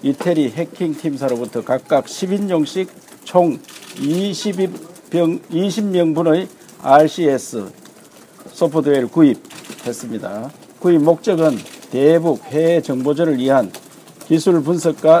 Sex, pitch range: male, 145-175 Hz